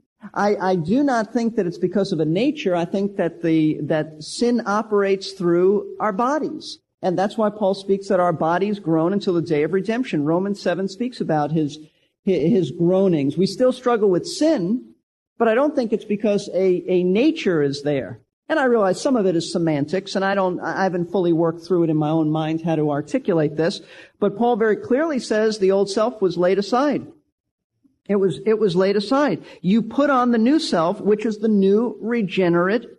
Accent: American